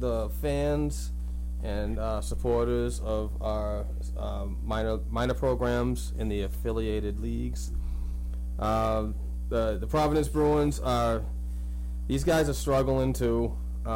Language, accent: English, American